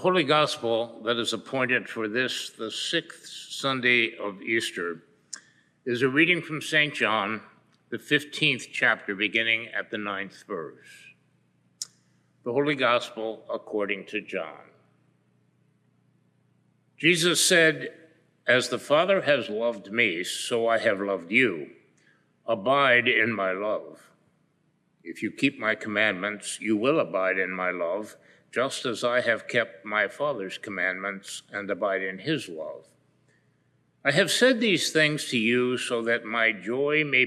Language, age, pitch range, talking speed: English, 60-79, 100-140 Hz, 140 wpm